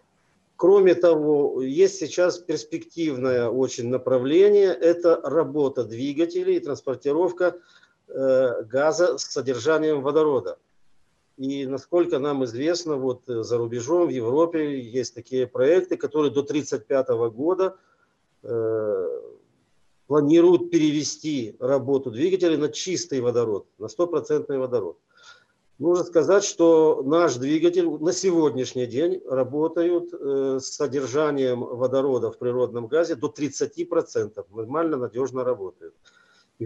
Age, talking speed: 50-69, 105 wpm